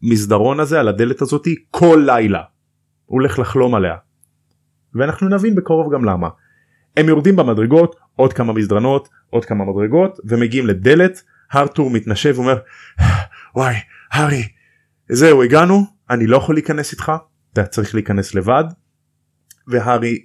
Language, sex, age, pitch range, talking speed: Hebrew, male, 30-49, 105-130 Hz, 130 wpm